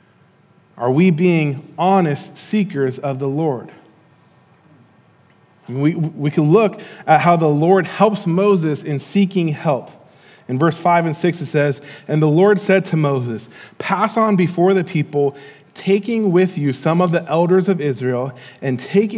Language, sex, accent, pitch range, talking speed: English, male, American, 145-190 Hz, 155 wpm